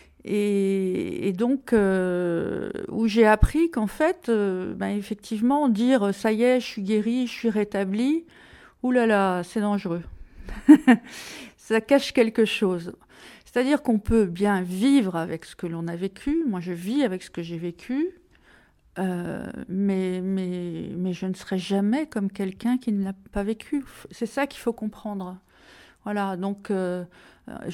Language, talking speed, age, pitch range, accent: French, 160 wpm, 50-69, 195-240 Hz, French